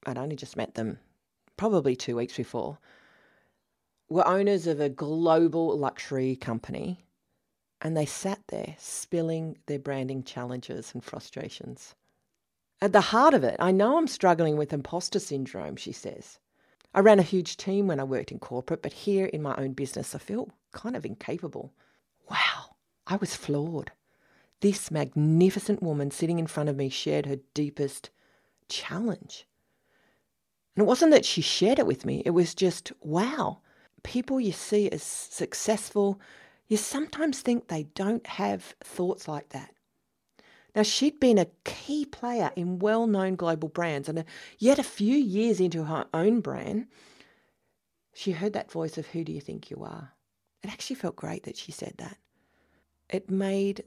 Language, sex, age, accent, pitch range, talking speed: English, female, 40-59, Australian, 140-205 Hz, 160 wpm